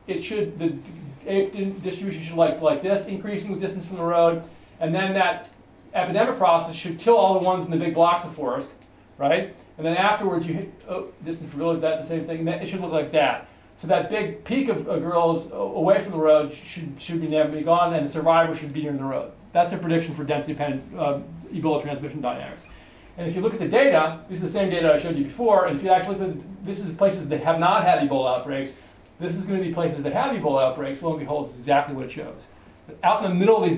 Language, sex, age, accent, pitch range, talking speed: English, male, 40-59, American, 140-175 Hz, 245 wpm